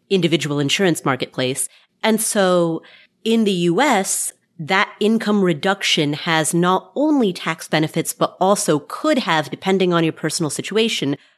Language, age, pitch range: English, 30-49, 150-200 Hz